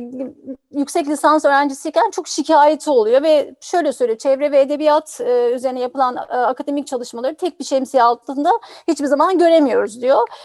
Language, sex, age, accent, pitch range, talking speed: Turkish, female, 40-59, native, 255-315 Hz, 150 wpm